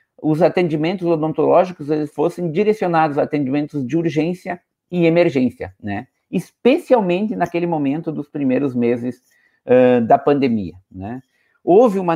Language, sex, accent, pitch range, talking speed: Portuguese, male, Brazilian, 120-170 Hz, 125 wpm